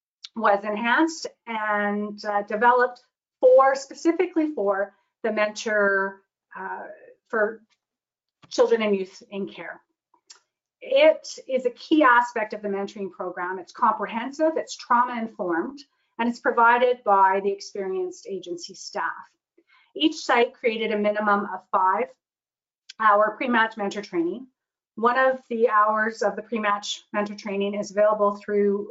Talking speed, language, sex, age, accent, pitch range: 130 wpm, English, female, 30-49, American, 200-255 Hz